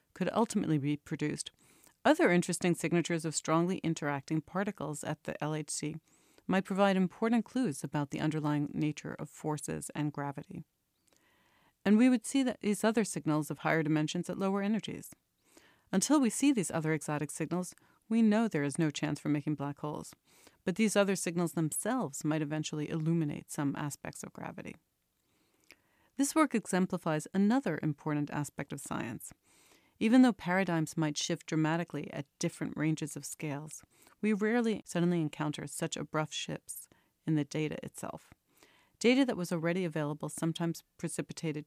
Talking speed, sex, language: 150 wpm, female, English